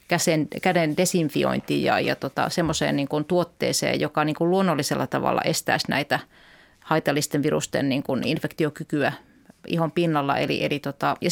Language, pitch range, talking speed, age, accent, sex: Finnish, 150-175 Hz, 145 wpm, 30-49, native, female